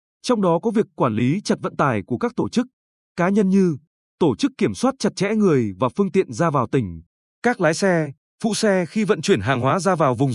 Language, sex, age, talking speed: Vietnamese, male, 20-39, 245 wpm